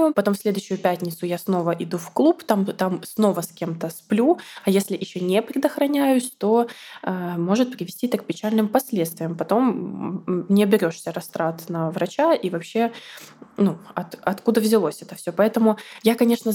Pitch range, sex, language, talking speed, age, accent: 180-230 Hz, female, Russian, 165 wpm, 20-39, native